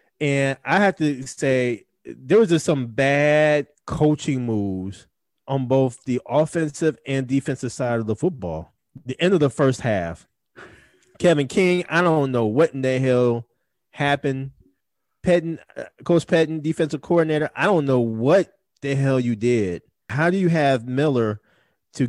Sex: male